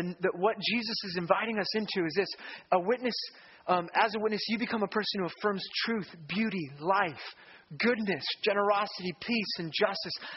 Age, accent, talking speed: 30-49, American, 175 wpm